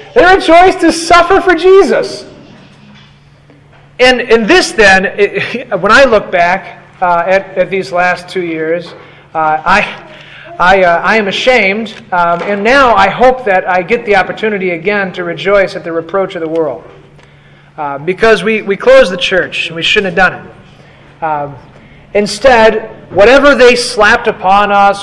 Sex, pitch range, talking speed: male, 185-275 Hz, 165 wpm